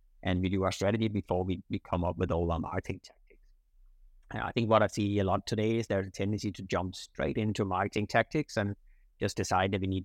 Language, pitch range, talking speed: English, 95-110 Hz, 245 wpm